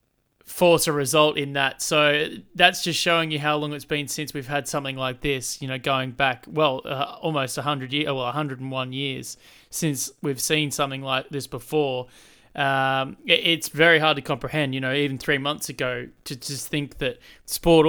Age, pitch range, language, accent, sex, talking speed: 20-39, 130-150 Hz, English, Australian, male, 190 wpm